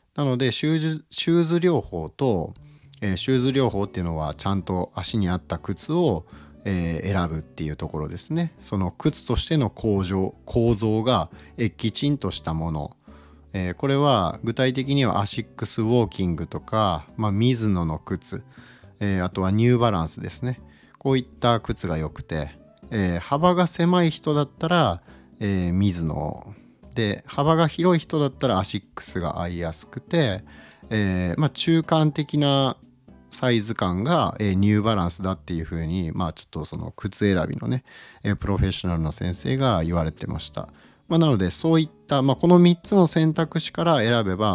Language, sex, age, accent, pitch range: Japanese, male, 40-59, native, 85-140 Hz